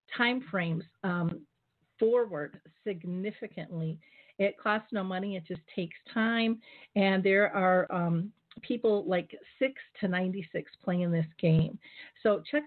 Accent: American